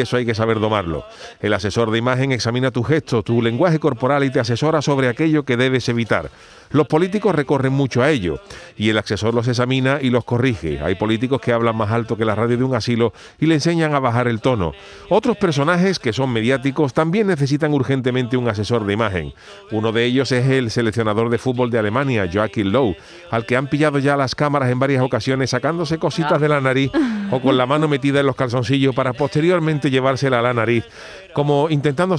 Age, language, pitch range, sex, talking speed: 40-59, Spanish, 115-145 Hz, male, 210 wpm